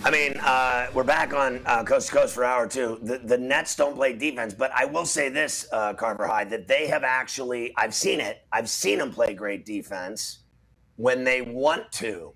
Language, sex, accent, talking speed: English, male, American, 205 wpm